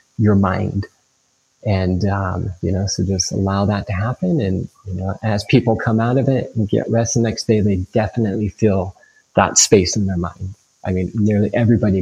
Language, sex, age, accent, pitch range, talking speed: English, male, 30-49, American, 100-115 Hz, 195 wpm